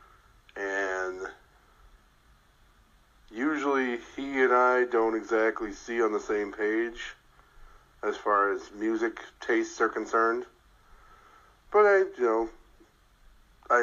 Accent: American